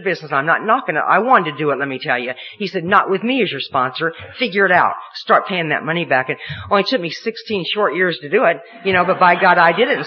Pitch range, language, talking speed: 165-205 Hz, English, 290 wpm